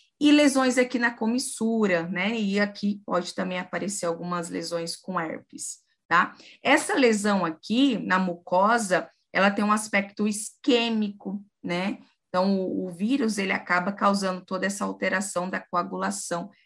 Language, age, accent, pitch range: Portuguese, 20-39, Brazilian, 185-230 Hz